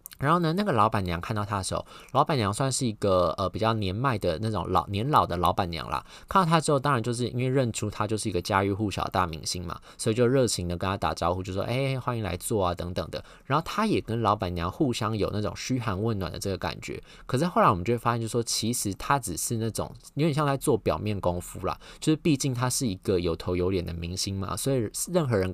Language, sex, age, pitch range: Chinese, male, 20-39, 95-120 Hz